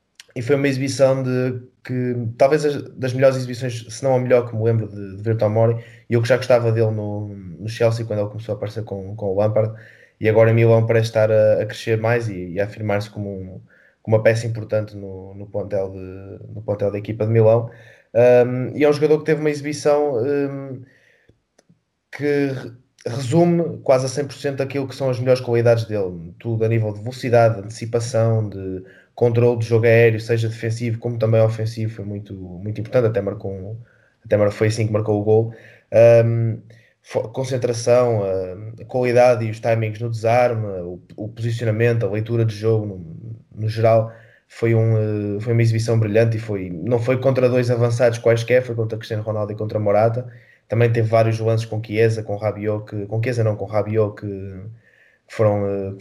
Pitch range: 105-120 Hz